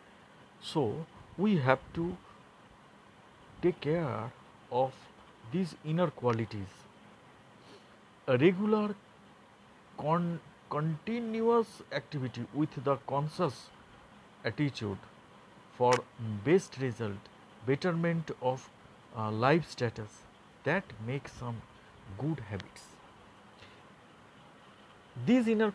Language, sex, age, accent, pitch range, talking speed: Bengali, male, 60-79, native, 120-180 Hz, 80 wpm